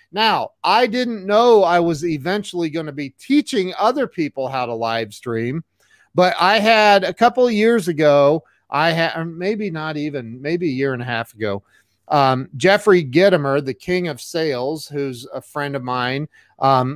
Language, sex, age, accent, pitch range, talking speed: English, male, 40-59, American, 145-205 Hz, 180 wpm